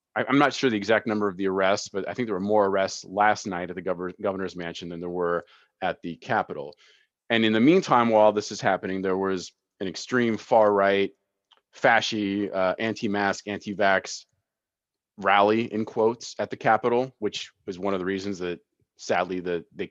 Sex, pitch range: male, 90-110 Hz